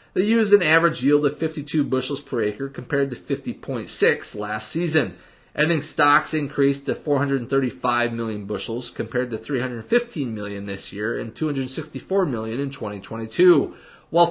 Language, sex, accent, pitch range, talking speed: English, male, American, 125-175 Hz, 145 wpm